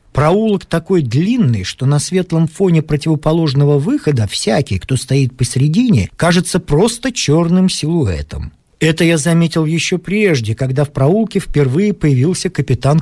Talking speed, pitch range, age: 130 wpm, 130-185 Hz, 40-59